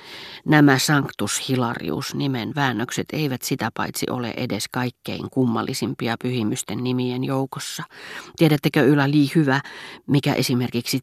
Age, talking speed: 40-59, 100 wpm